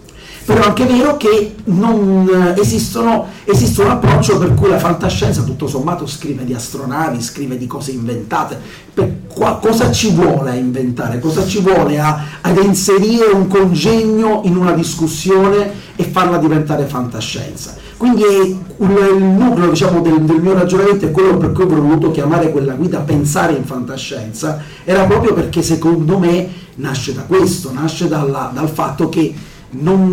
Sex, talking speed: male, 165 wpm